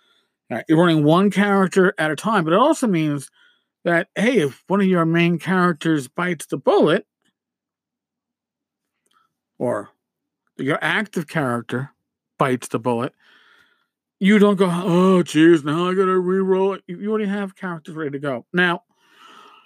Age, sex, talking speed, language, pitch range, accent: 50-69, male, 145 wpm, English, 160-215 Hz, American